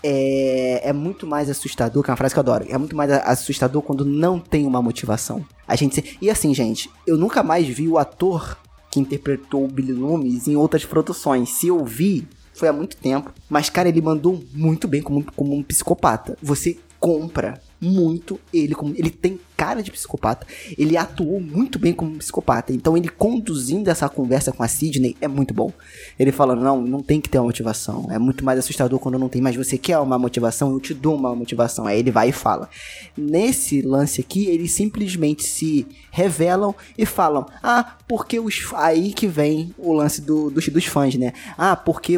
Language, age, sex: Portuguese, 20-39, male